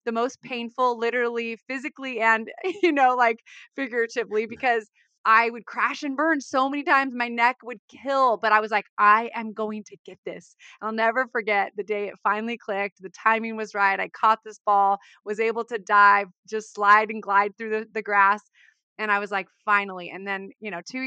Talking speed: 200 wpm